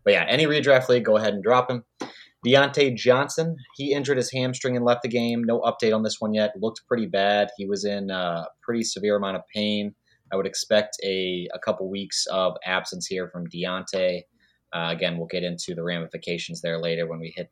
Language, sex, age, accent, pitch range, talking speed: English, male, 30-49, American, 90-120 Hz, 210 wpm